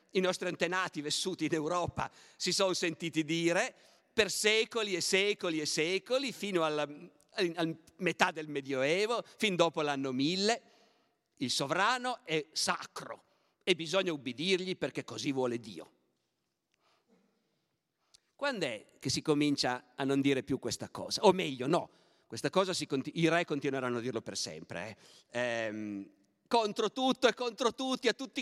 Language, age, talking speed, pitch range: Italian, 50-69, 140 wpm, 140-220 Hz